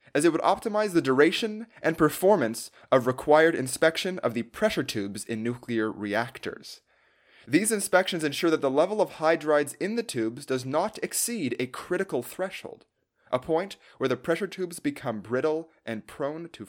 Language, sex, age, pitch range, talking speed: English, male, 30-49, 120-175 Hz, 165 wpm